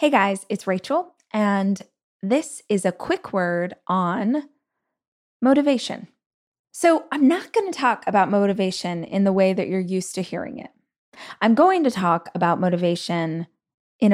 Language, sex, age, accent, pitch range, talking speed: English, female, 20-39, American, 175-220 Hz, 155 wpm